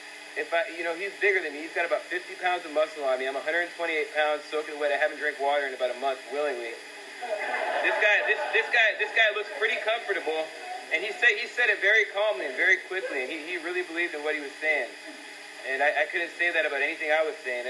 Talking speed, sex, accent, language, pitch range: 250 wpm, male, American, English, 120-165 Hz